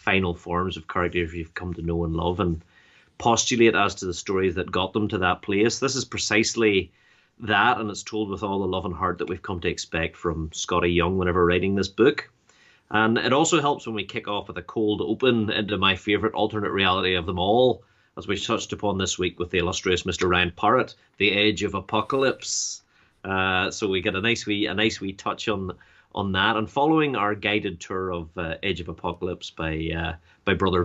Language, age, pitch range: English, 30-49, 90-105 Hz